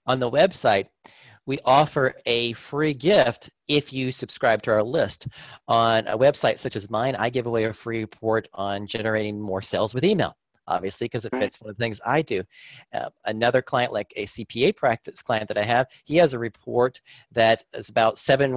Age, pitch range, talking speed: 40-59, 115-165 Hz, 195 wpm